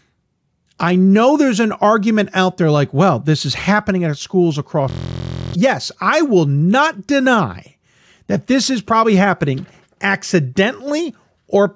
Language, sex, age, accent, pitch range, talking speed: English, male, 50-69, American, 165-235 Hz, 140 wpm